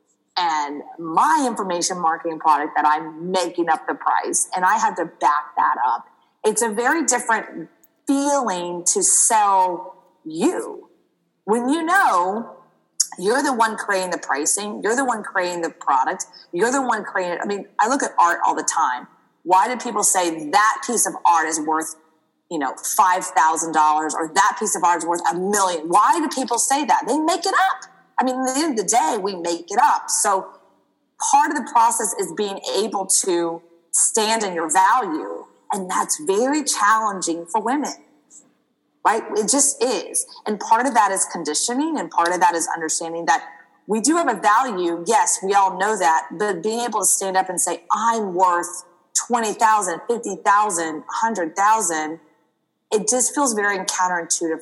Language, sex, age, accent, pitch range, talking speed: English, female, 30-49, American, 170-250 Hz, 180 wpm